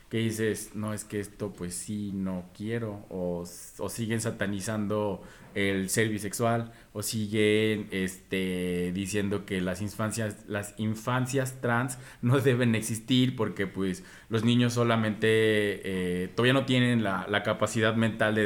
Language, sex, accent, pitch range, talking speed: Spanish, male, Mexican, 105-130 Hz, 145 wpm